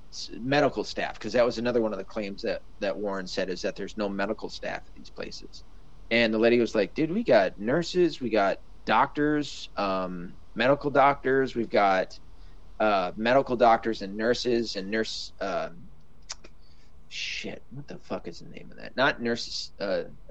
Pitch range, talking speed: 85-115 Hz, 175 wpm